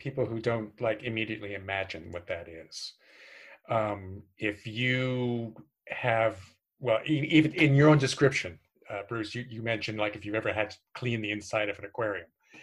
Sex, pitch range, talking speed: male, 100-130 Hz, 170 wpm